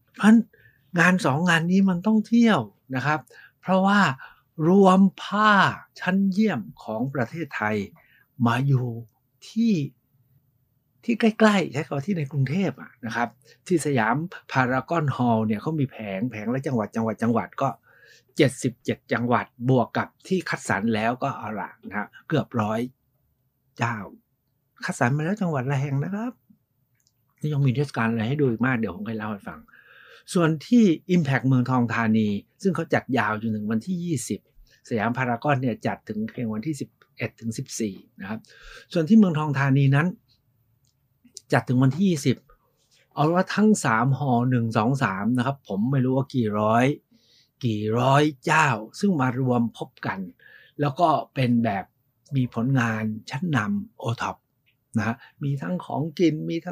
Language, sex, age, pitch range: Thai, male, 60-79, 120-165 Hz